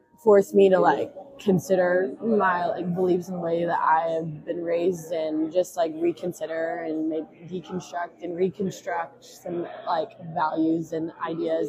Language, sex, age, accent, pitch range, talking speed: English, female, 20-39, American, 170-200 Hz, 150 wpm